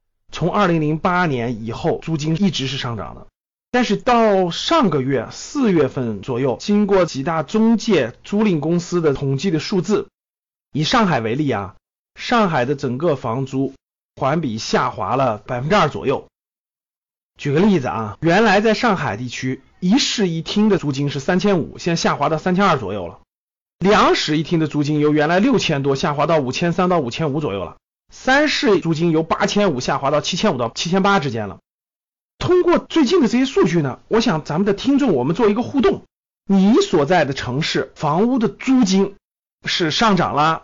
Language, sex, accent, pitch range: Chinese, male, native, 145-210 Hz